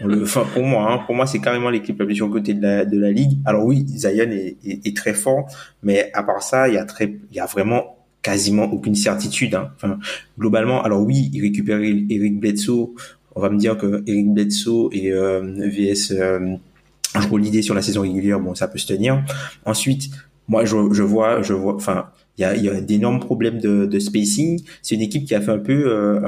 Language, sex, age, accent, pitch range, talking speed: French, male, 20-39, French, 100-115 Hz, 225 wpm